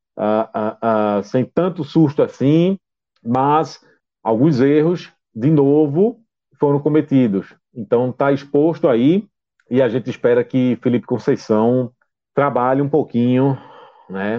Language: Portuguese